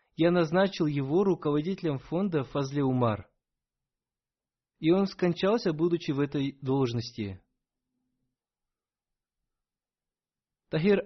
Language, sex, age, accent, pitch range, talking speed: Russian, male, 20-39, native, 135-175 Hz, 75 wpm